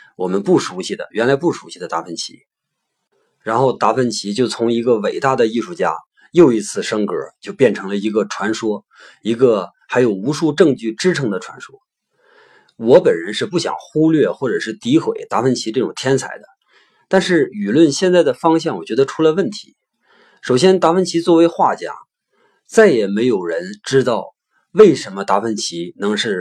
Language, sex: Chinese, male